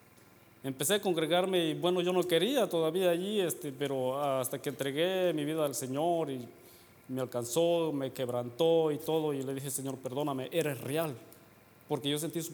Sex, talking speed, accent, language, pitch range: male, 175 wpm, Mexican, English, 120-155 Hz